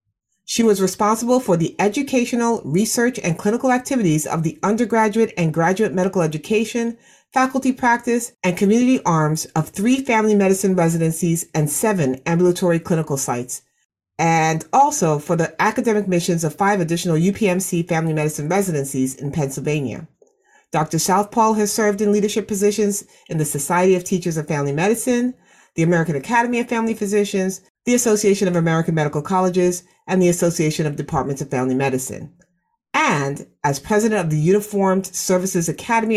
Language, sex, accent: English, female, American